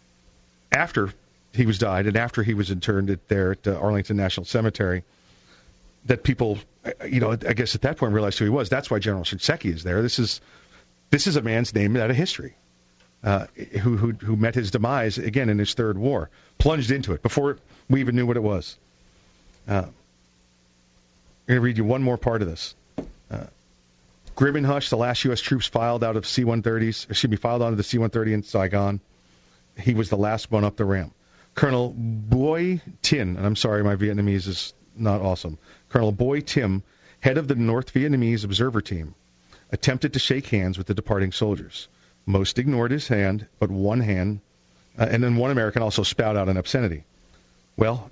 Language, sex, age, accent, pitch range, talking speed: English, male, 40-59, American, 95-120 Hz, 190 wpm